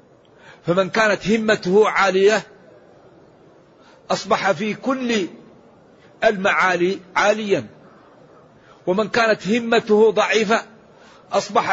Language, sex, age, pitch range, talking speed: Arabic, male, 50-69, 190-225 Hz, 70 wpm